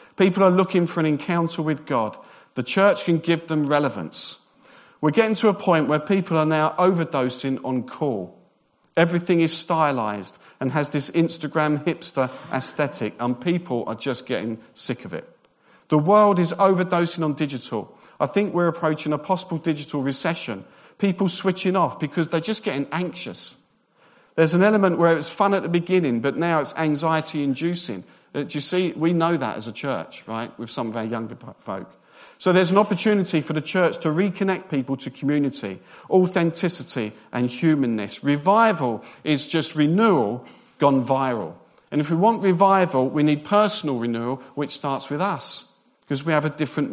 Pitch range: 140-185 Hz